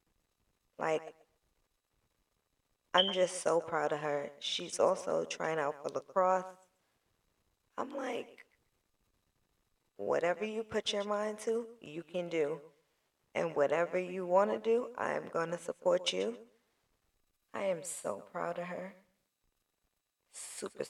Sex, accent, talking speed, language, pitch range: female, American, 120 wpm, English, 160-235 Hz